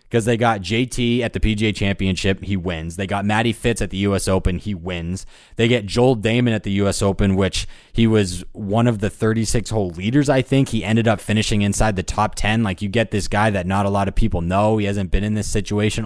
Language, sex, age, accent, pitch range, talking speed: English, male, 20-39, American, 95-115 Hz, 240 wpm